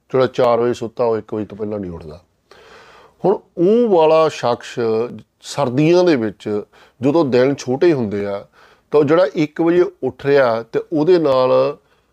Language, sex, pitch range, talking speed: Punjabi, male, 115-140 Hz, 160 wpm